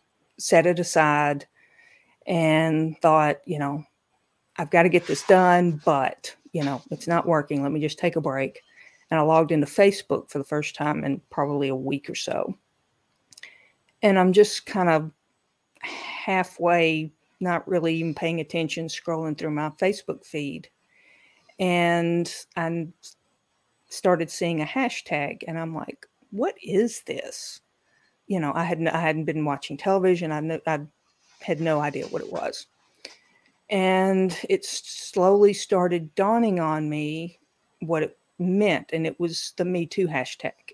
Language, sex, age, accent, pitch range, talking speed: English, female, 50-69, American, 155-185 Hz, 150 wpm